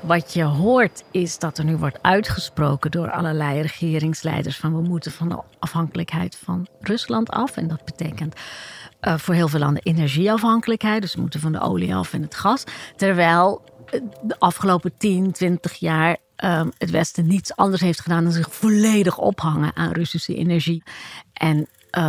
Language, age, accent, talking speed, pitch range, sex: Dutch, 40-59, Dutch, 165 wpm, 155-180 Hz, female